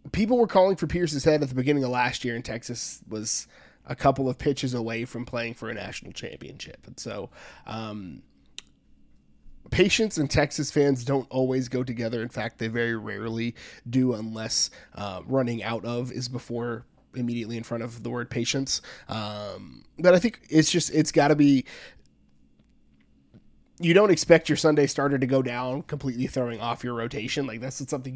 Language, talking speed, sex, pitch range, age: English, 185 wpm, male, 120-160 Hz, 20-39